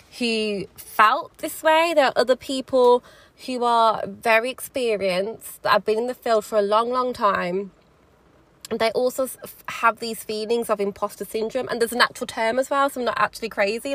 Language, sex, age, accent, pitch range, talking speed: English, female, 20-39, British, 195-230 Hz, 200 wpm